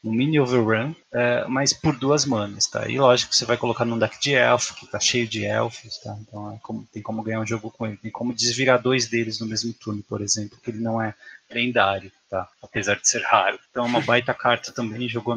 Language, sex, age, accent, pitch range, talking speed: Portuguese, male, 20-39, Brazilian, 110-140 Hz, 240 wpm